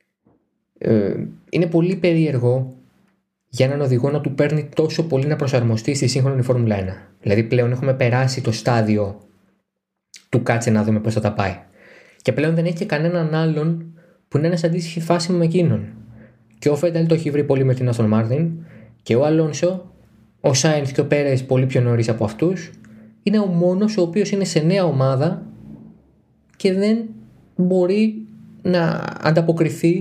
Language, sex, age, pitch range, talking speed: Greek, male, 20-39, 125-175 Hz, 165 wpm